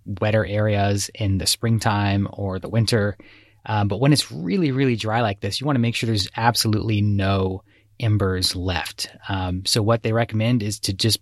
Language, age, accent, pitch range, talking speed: English, 20-39, American, 100-120 Hz, 185 wpm